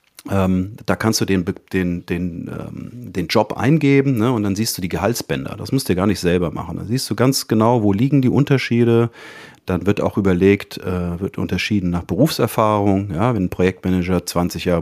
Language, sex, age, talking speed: German, male, 40-59, 190 wpm